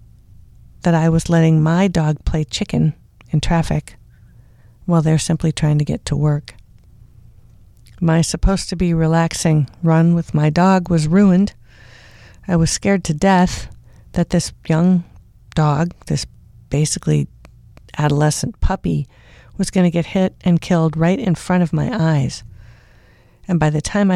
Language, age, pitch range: English, 50-69, 115-175 Hz